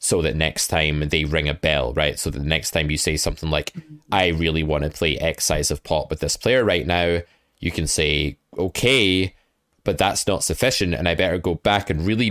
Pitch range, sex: 75-85 Hz, male